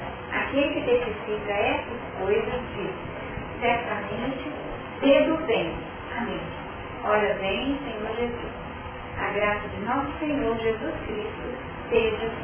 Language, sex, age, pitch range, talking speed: Portuguese, female, 40-59, 215-270 Hz, 105 wpm